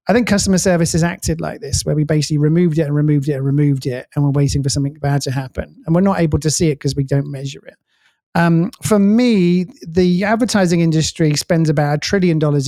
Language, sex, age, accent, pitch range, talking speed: English, male, 30-49, British, 135-160 Hz, 235 wpm